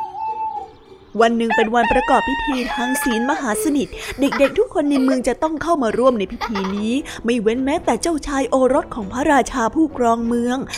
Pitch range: 235-310 Hz